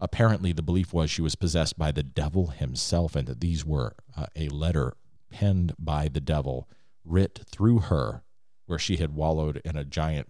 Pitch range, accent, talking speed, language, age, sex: 75-95 Hz, American, 185 wpm, English, 40-59, male